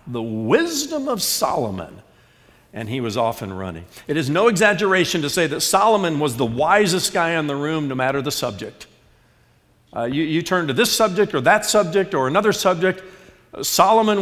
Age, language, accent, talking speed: 50-69, English, American, 180 wpm